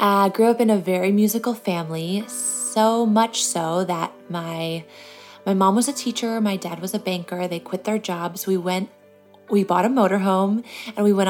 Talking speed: 195 wpm